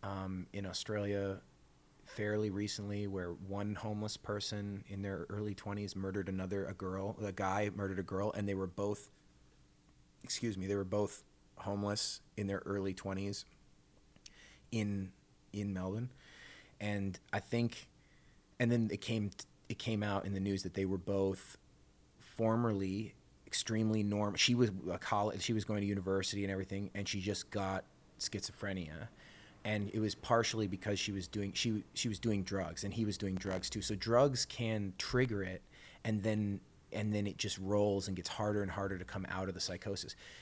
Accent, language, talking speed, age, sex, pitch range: American, English, 170 wpm, 30-49, male, 95-105 Hz